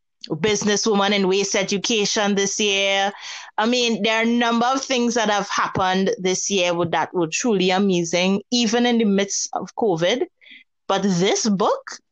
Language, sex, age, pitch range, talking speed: English, female, 30-49, 185-245 Hz, 160 wpm